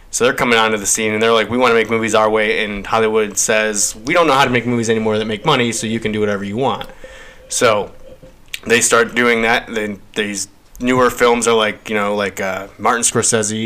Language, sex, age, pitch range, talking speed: English, male, 20-39, 105-120 Hz, 235 wpm